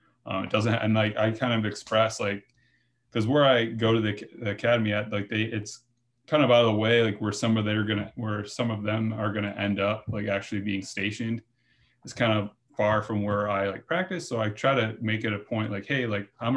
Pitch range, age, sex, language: 100-115 Hz, 20-39, male, English